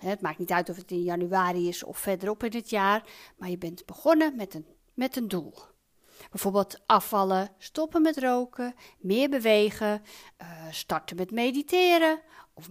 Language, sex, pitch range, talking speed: Dutch, female, 185-285 Hz, 160 wpm